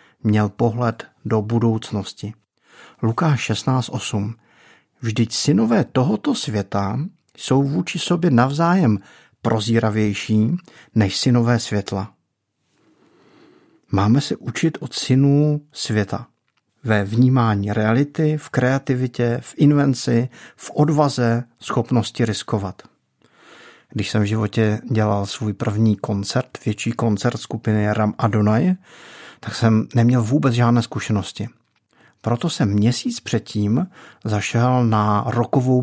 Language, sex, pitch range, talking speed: Czech, male, 110-135 Hz, 100 wpm